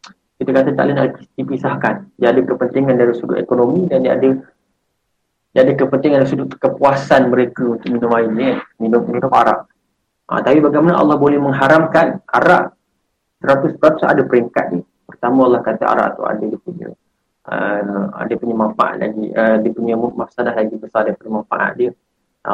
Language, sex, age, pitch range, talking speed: Malay, male, 20-39, 115-135 Hz, 170 wpm